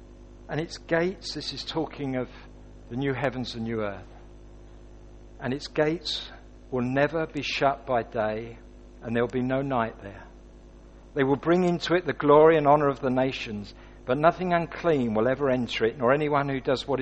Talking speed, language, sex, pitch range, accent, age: 185 wpm, English, male, 120-170 Hz, British, 50-69